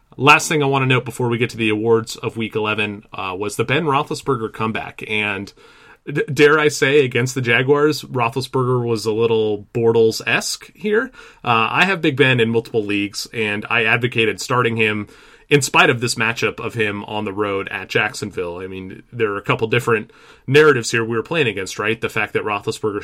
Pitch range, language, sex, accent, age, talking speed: 110-135 Hz, English, male, American, 30-49, 200 wpm